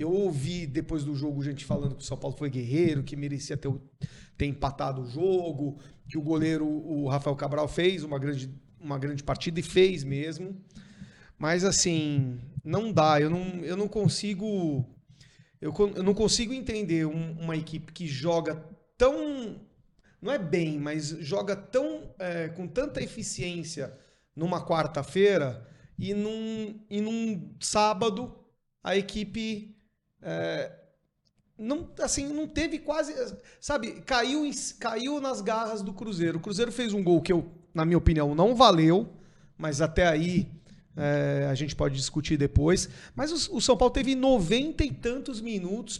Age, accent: 40-59, Brazilian